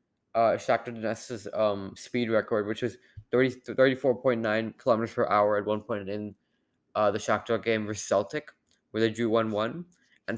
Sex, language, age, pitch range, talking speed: male, English, 20-39, 110-135 Hz, 170 wpm